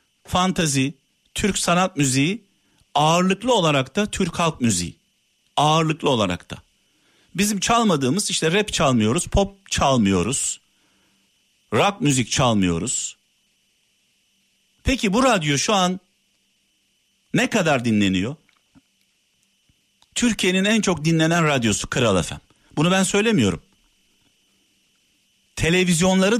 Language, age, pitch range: Turkish, 60-79, 135-200 Hz